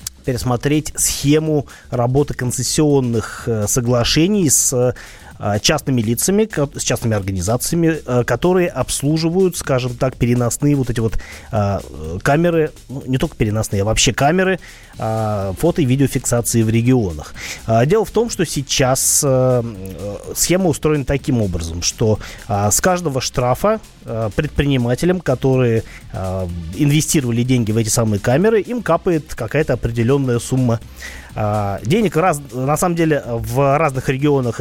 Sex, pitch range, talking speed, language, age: male, 115-155 Hz, 115 wpm, Russian, 30-49